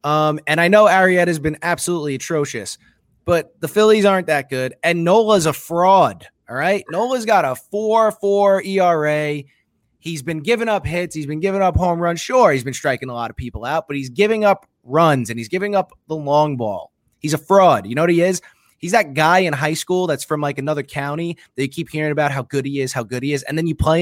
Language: English